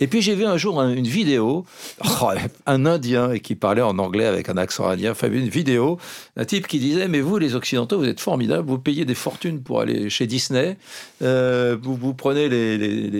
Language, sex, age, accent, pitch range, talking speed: French, male, 60-79, French, 120-170 Hz, 220 wpm